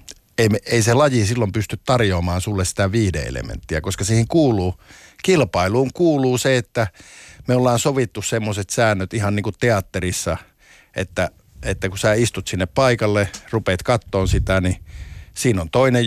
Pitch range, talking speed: 95-115 Hz, 155 wpm